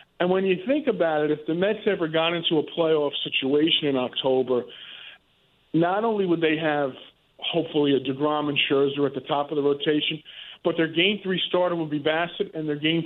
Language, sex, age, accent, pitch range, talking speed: English, male, 50-69, American, 150-180 Hz, 200 wpm